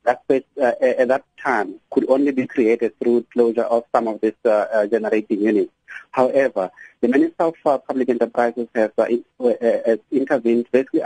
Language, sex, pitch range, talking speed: English, male, 115-130 Hz, 175 wpm